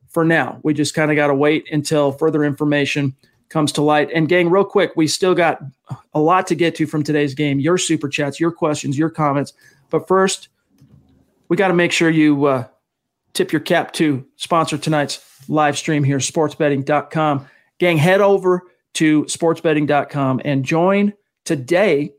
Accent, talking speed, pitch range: American, 175 wpm, 145-170 Hz